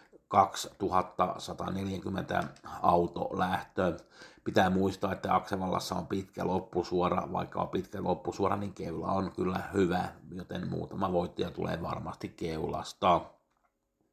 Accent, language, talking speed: native, Finnish, 100 wpm